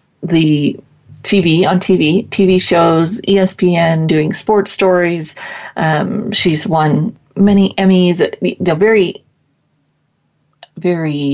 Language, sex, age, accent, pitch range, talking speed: English, female, 30-49, American, 155-195 Hz, 95 wpm